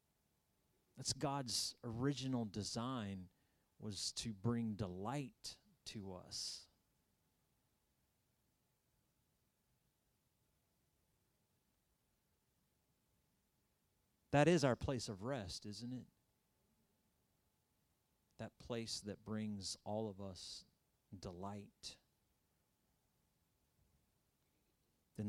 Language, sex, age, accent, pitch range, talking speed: English, male, 30-49, American, 100-125 Hz, 65 wpm